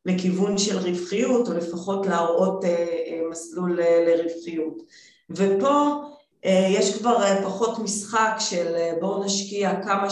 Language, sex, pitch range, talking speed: Hebrew, female, 170-195 Hz, 135 wpm